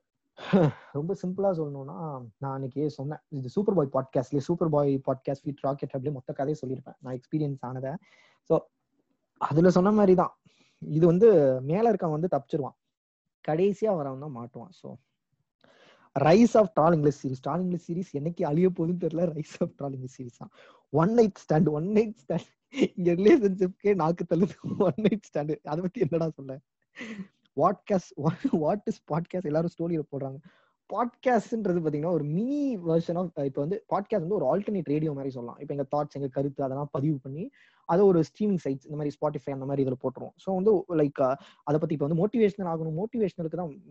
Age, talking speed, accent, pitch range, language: 20-39, 120 wpm, native, 140-185 Hz, Tamil